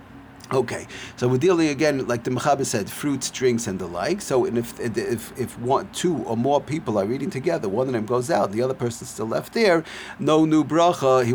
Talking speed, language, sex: 225 wpm, English, male